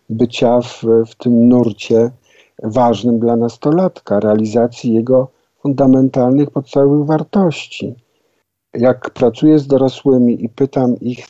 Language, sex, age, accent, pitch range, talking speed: Polish, male, 50-69, native, 110-135 Hz, 105 wpm